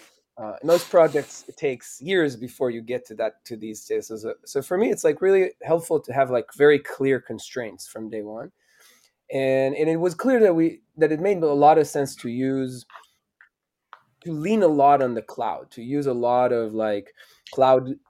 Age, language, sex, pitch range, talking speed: 20-39, English, male, 125-170 Hz, 200 wpm